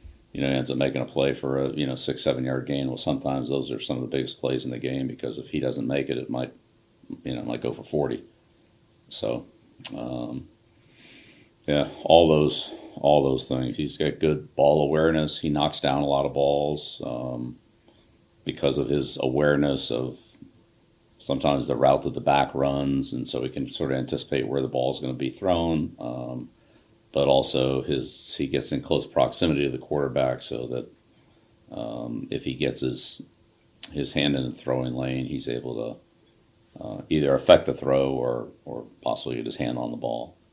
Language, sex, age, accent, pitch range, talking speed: English, male, 50-69, American, 65-70 Hz, 195 wpm